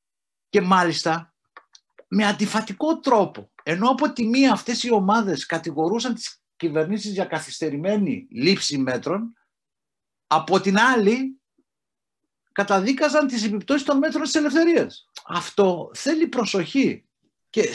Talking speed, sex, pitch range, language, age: 110 wpm, male, 130-210 Hz, Greek, 50-69